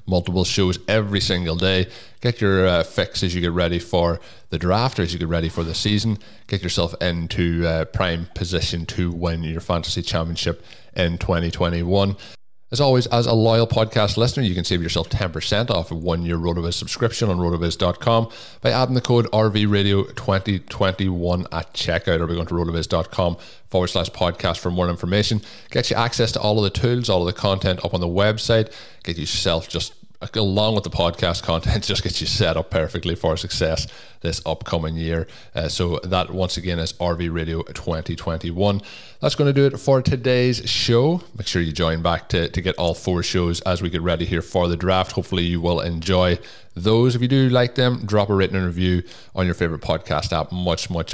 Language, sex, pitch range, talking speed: English, male, 85-110 Hz, 195 wpm